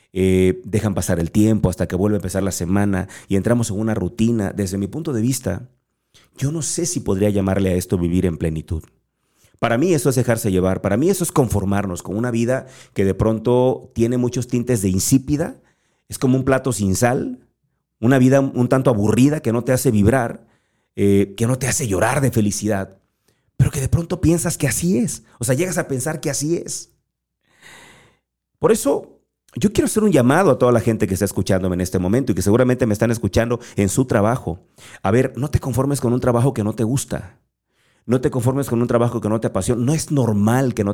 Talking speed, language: 215 wpm, Spanish